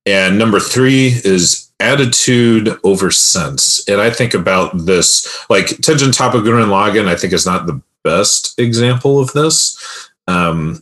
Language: English